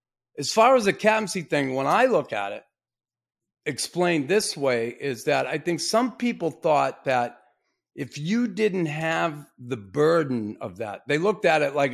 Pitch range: 130-170 Hz